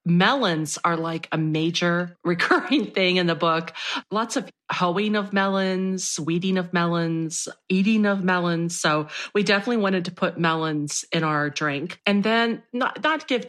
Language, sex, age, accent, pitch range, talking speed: English, female, 40-59, American, 165-210 Hz, 160 wpm